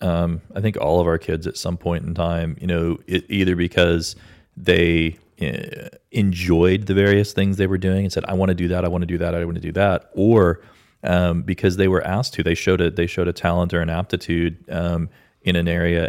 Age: 30-49